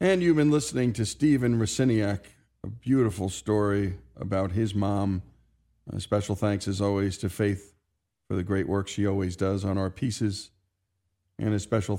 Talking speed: 165 wpm